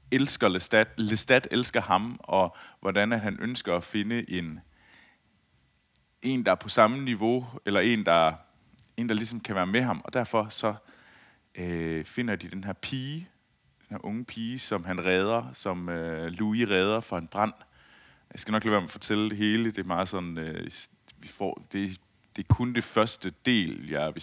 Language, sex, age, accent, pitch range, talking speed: Danish, male, 30-49, native, 90-115 Hz, 190 wpm